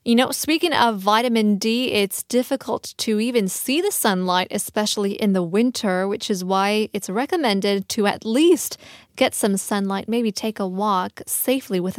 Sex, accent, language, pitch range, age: female, American, Korean, 200-260 Hz, 20-39